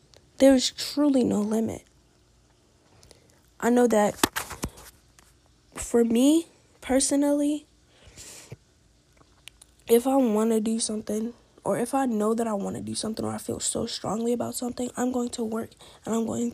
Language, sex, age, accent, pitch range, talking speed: English, female, 10-29, American, 200-250 Hz, 145 wpm